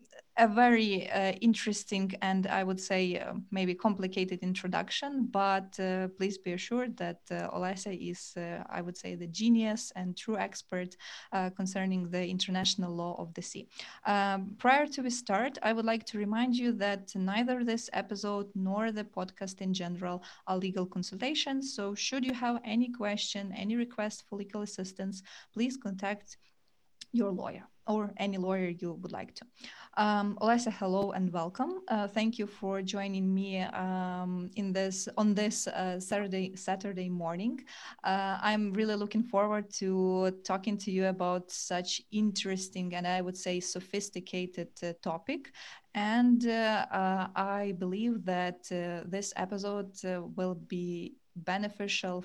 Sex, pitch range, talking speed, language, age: female, 185-215 Hz, 155 wpm, Ukrainian, 20-39